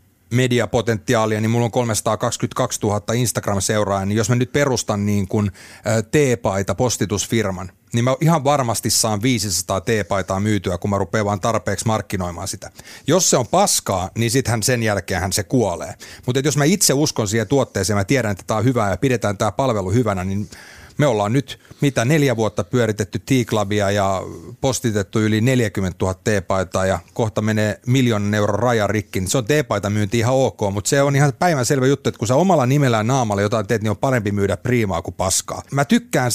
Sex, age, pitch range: male, 30-49, 100-125 Hz